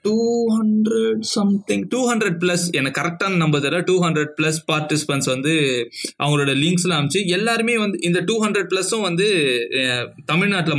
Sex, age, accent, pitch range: male, 20-39, native, 130-170 Hz